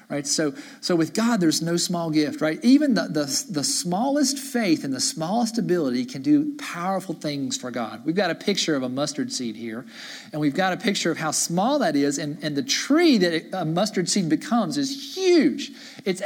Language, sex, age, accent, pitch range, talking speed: English, male, 40-59, American, 165-260 Hz, 215 wpm